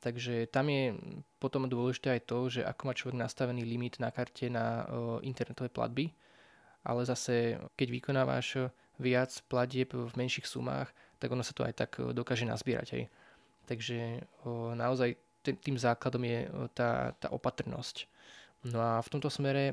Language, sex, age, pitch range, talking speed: Slovak, male, 20-39, 120-135 Hz, 165 wpm